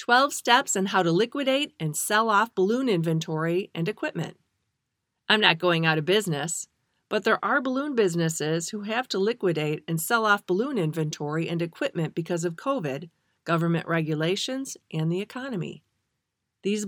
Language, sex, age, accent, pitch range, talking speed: English, female, 40-59, American, 165-220 Hz, 155 wpm